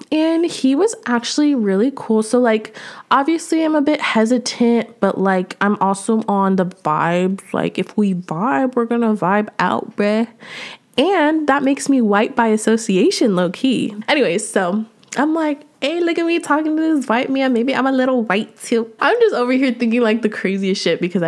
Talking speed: 185 wpm